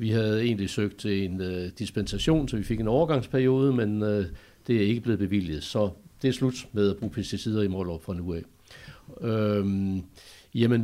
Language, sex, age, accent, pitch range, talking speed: Danish, male, 60-79, native, 95-120 Hz, 195 wpm